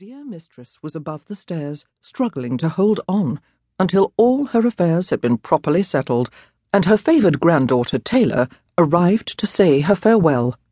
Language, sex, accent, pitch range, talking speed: English, female, British, 135-215 Hz, 155 wpm